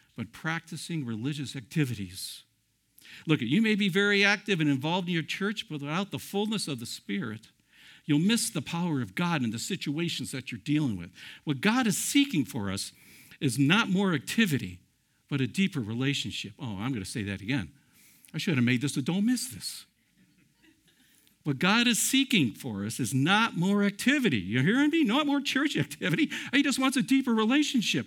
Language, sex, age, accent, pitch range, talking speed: English, male, 60-79, American, 140-225 Hz, 190 wpm